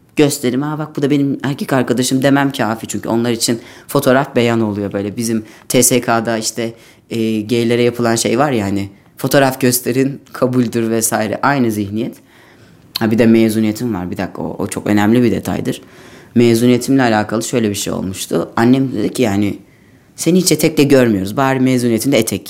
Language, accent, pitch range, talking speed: Turkish, native, 110-130 Hz, 170 wpm